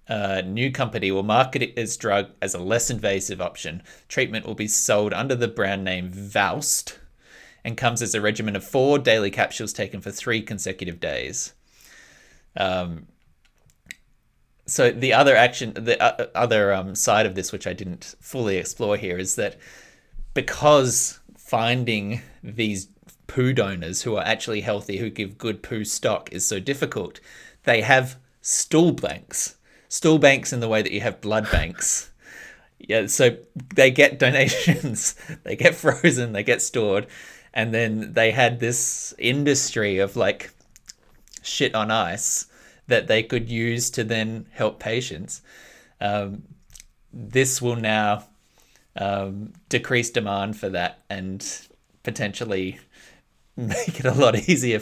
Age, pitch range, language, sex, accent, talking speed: 20-39, 100-125 Hz, English, male, Australian, 145 wpm